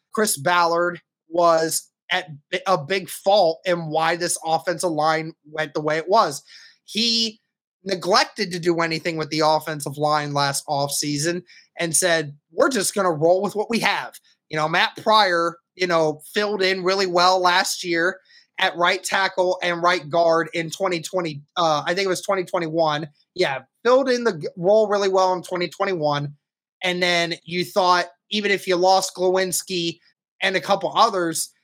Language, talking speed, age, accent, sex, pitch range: English, 165 wpm, 20-39, American, male, 165-200 Hz